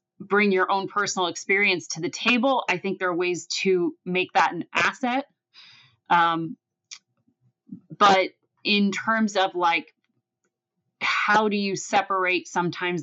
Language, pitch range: English, 170-205 Hz